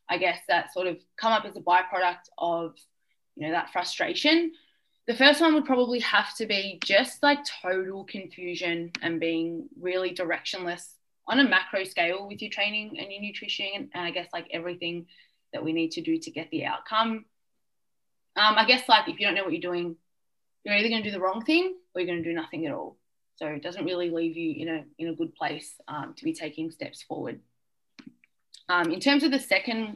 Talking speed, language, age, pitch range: 210 wpm, English, 20-39, 170-225 Hz